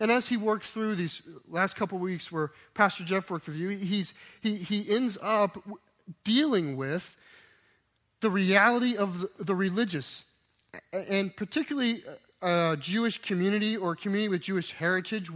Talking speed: 150 wpm